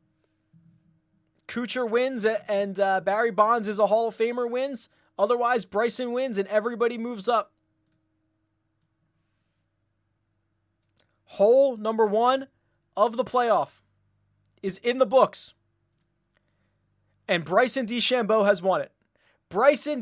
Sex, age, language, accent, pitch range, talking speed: male, 20-39, English, American, 150-250 Hz, 110 wpm